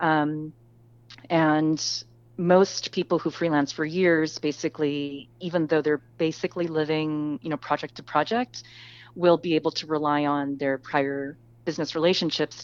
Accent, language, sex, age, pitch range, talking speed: American, English, female, 30-49, 135-160 Hz, 140 wpm